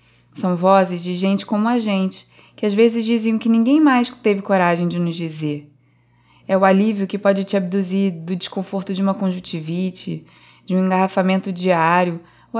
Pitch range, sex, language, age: 170-215 Hz, female, Portuguese, 20-39